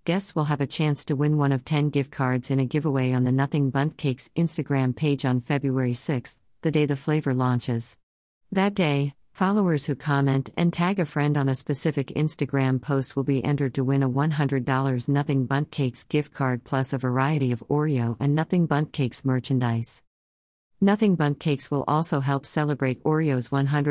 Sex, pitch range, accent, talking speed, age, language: female, 130-155 Hz, American, 185 wpm, 50-69, English